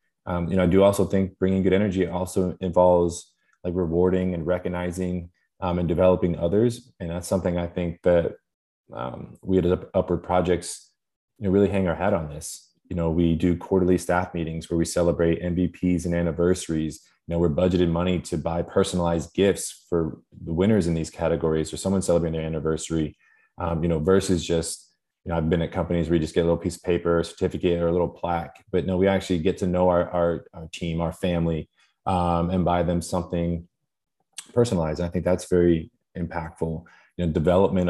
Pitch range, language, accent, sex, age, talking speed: 85-95 Hz, English, American, male, 20-39, 200 wpm